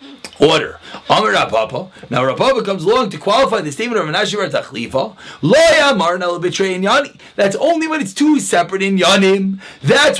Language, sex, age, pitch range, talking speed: English, male, 30-49, 185-275 Hz, 125 wpm